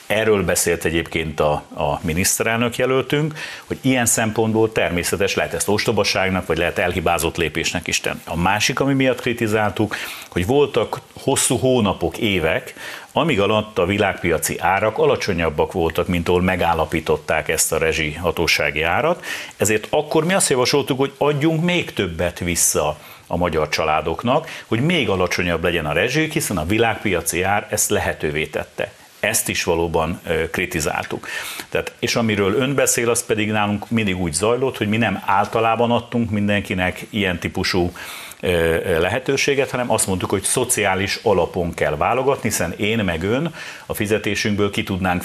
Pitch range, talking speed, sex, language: 90-125 Hz, 145 wpm, male, Hungarian